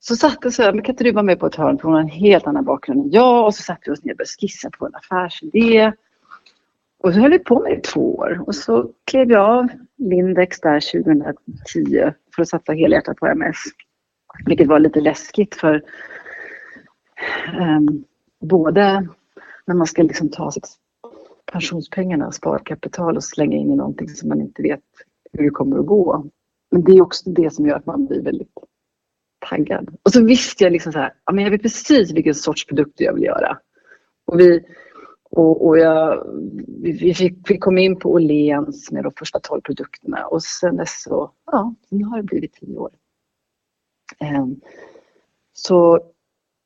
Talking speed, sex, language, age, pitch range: 180 wpm, female, Swedish, 40-59, 155-220 Hz